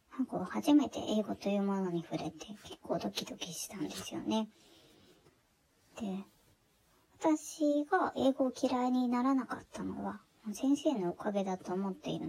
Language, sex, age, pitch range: Japanese, male, 20-39, 195-285 Hz